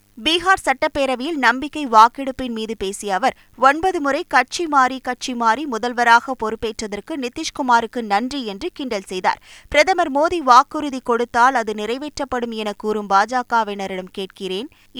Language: Tamil